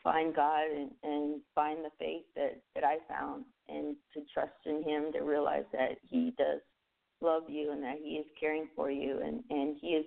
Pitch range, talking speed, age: 145-160 Hz, 205 wpm, 40-59